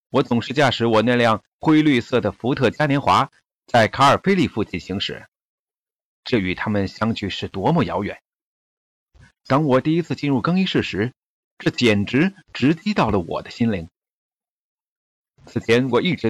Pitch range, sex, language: 100-140 Hz, male, Chinese